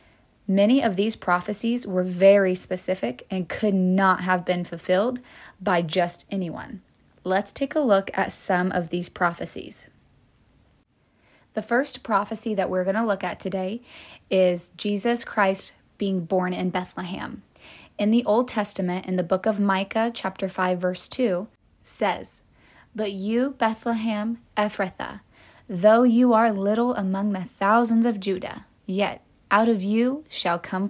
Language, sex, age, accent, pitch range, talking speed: English, female, 20-39, American, 185-220 Hz, 145 wpm